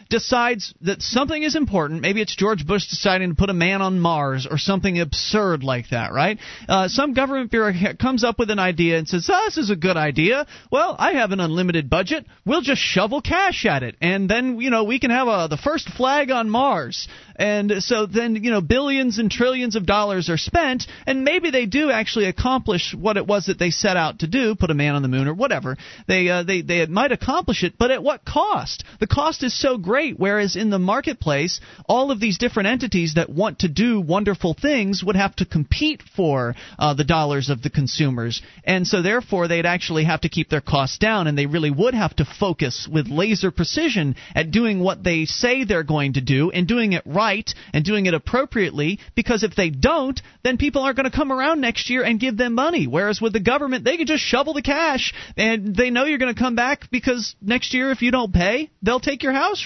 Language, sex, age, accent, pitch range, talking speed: English, male, 40-59, American, 175-255 Hz, 225 wpm